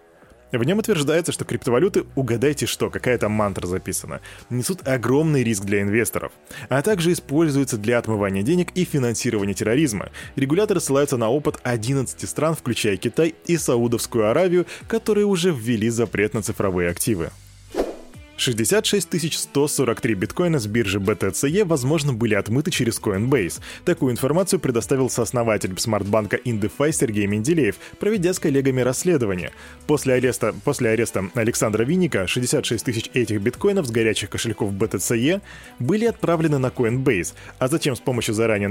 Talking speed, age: 140 wpm, 20-39